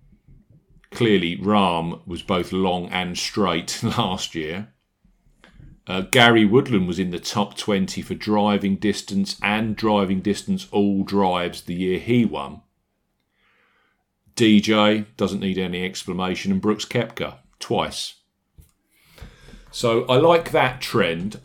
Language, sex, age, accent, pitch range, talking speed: English, male, 40-59, British, 95-120 Hz, 120 wpm